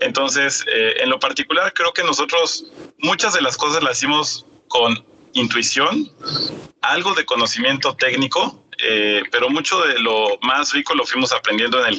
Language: Spanish